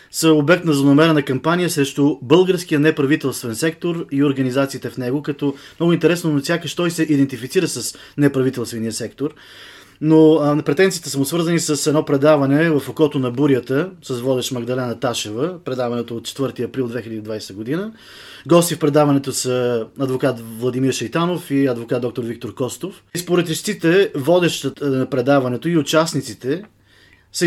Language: Bulgarian